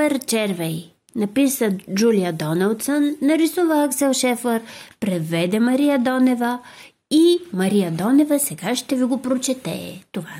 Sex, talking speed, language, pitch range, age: female, 110 wpm, Bulgarian, 205-295 Hz, 30-49